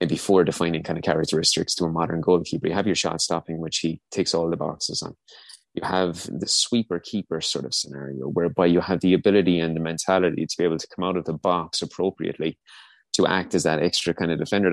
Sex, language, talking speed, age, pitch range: male, English, 230 wpm, 20-39, 85-100 Hz